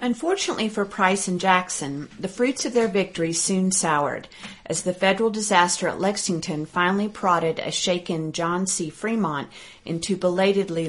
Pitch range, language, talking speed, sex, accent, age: 160-190 Hz, English, 150 wpm, female, American, 40-59